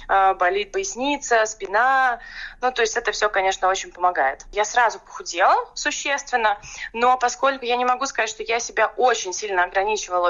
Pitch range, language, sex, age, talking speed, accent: 190-250 Hz, Russian, female, 20-39, 155 wpm, native